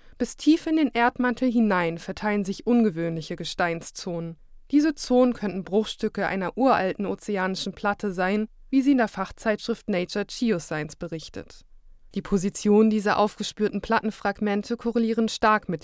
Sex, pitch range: female, 185-235 Hz